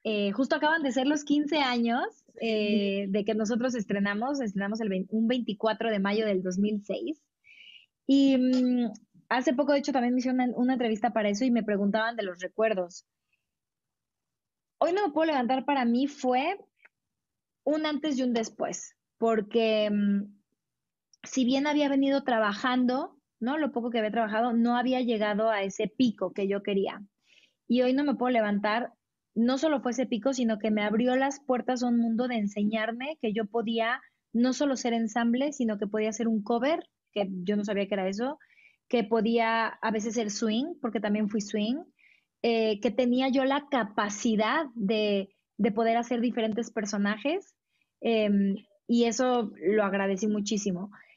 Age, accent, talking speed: 20-39, Mexican, 170 wpm